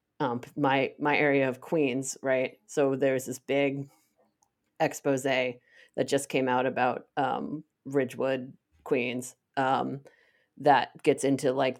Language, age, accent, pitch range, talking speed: English, 30-49, American, 125-145 Hz, 125 wpm